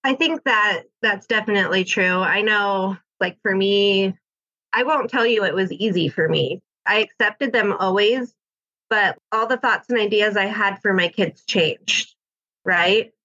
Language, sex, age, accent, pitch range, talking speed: English, female, 20-39, American, 190-230 Hz, 170 wpm